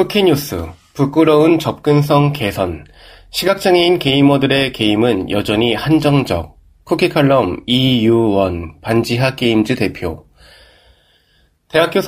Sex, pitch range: male, 100-155 Hz